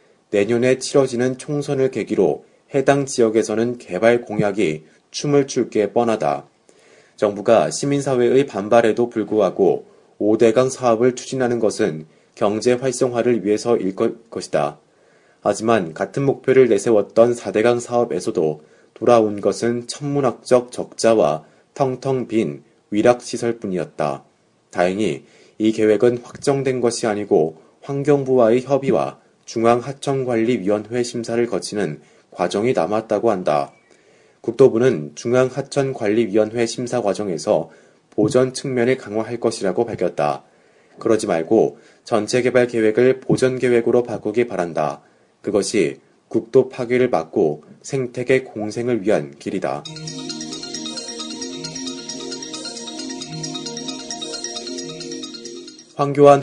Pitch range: 105-130 Hz